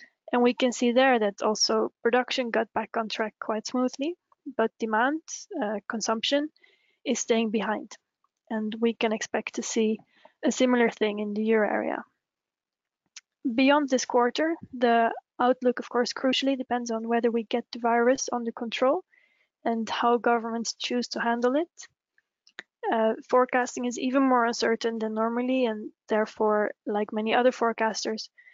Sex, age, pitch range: female, 20-39, 225-255 Hz